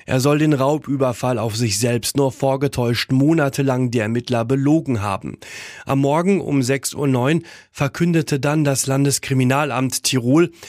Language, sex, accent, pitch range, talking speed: German, male, German, 120-140 Hz, 135 wpm